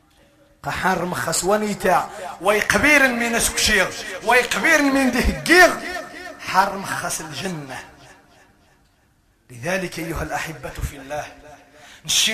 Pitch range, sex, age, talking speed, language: 210-290 Hz, male, 30-49, 90 wpm, Arabic